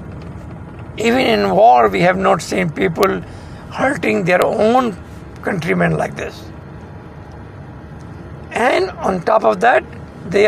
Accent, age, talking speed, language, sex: Indian, 60-79, 115 wpm, English, male